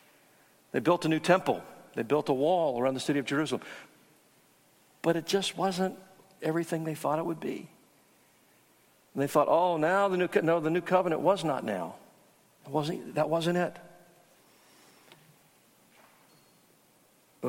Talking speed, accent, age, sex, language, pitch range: 155 wpm, American, 50-69, male, English, 150-180 Hz